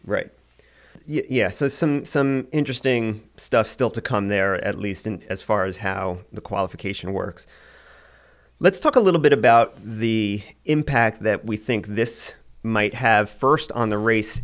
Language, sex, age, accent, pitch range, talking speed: English, male, 30-49, American, 100-120 Hz, 160 wpm